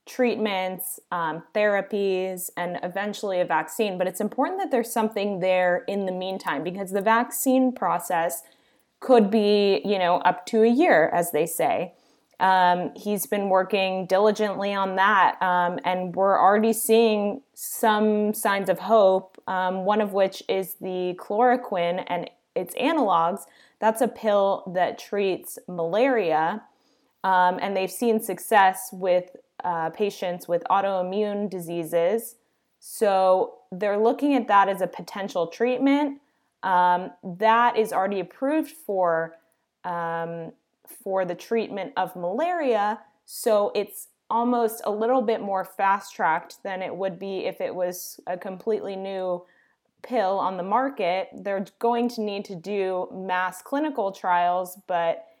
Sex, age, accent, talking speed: female, 20-39, American, 140 wpm